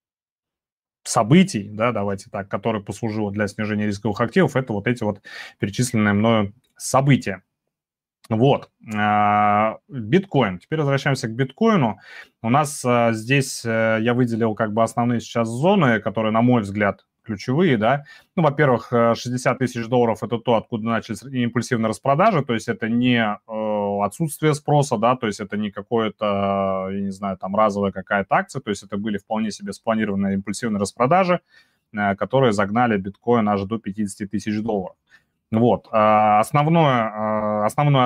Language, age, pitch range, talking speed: Russian, 20-39, 105-125 Hz, 140 wpm